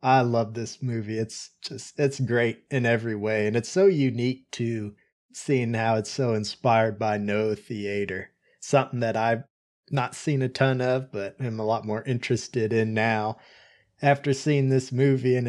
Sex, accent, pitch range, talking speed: male, American, 105-130 Hz, 175 wpm